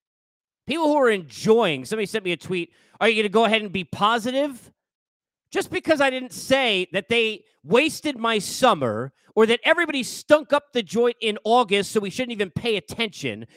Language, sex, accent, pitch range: English, male, American, 205-275 Hz